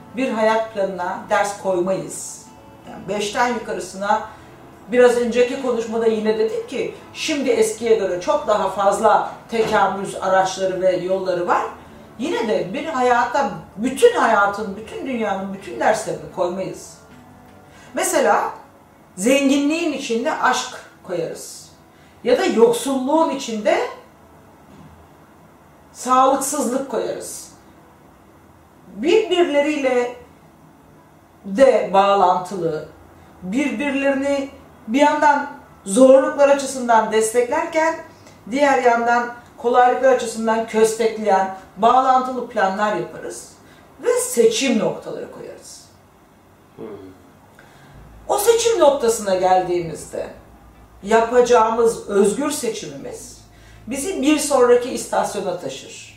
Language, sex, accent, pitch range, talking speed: Turkish, female, native, 200-275 Hz, 85 wpm